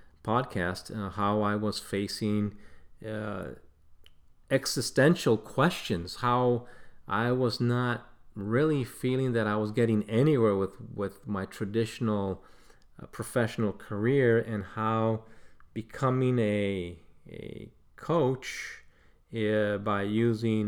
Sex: male